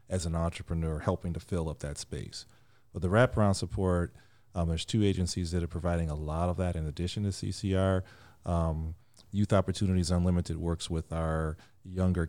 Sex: male